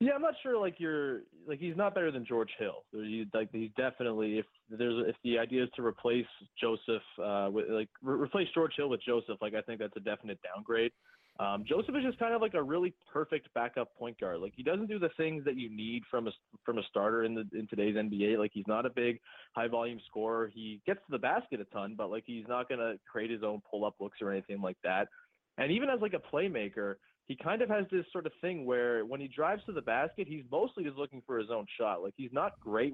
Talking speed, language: 250 wpm, English